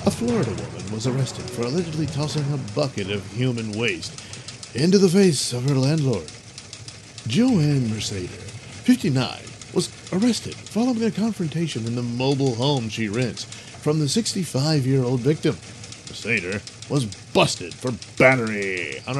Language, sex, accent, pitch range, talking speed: English, male, American, 115-155 Hz, 135 wpm